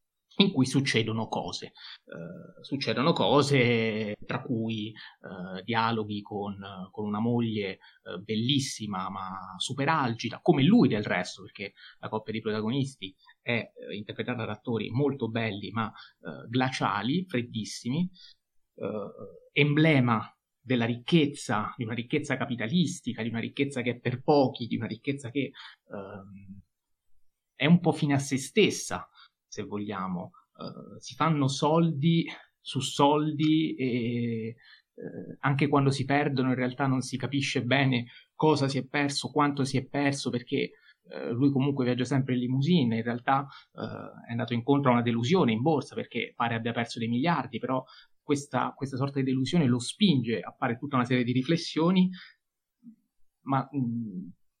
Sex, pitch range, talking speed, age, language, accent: male, 115-140 Hz, 145 wpm, 30-49, Italian, native